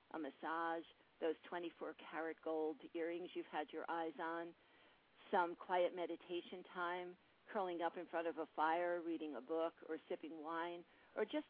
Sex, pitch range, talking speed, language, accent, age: female, 170-245 Hz, 155 wpm, English, American, 50-69